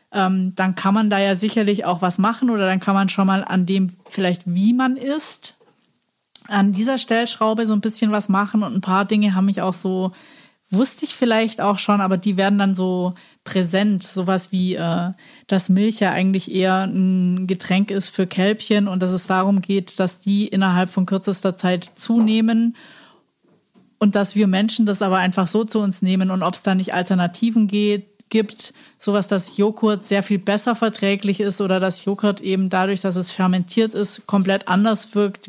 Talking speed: 190 wpm